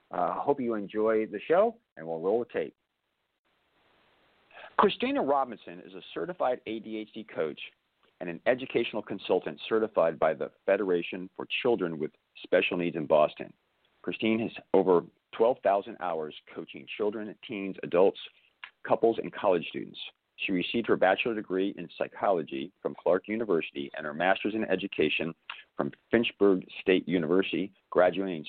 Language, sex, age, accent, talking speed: English, male, 40-59, American, 140 wpm